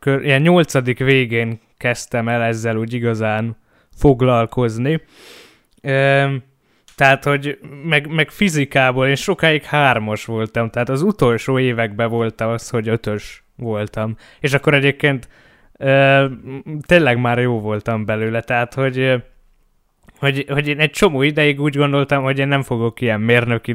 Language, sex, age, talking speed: Hungarian, male, 20-39, 135 wpm